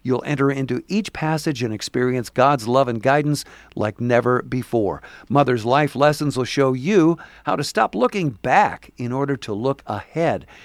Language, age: English, 50-69